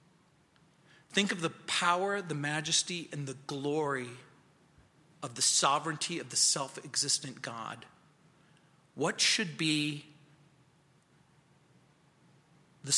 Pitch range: 150-210 Hz